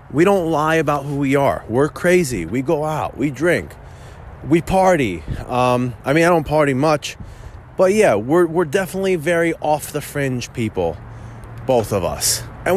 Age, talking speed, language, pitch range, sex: 20-39, 175 wpm, English, 110-155 Hz, male